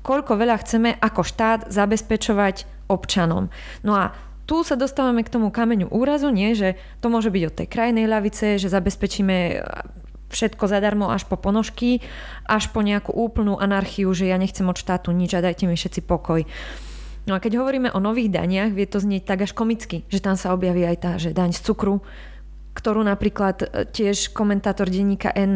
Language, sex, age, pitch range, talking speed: Slovak, female, 20-39, 190-230 Hz, 180 wpm